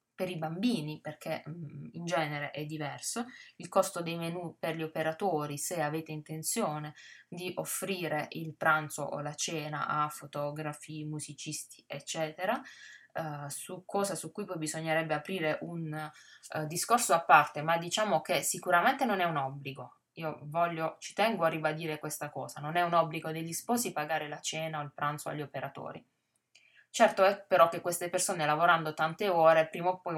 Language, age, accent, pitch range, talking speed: Italian, 20-39, native, 150-170 Hz, 165 wpm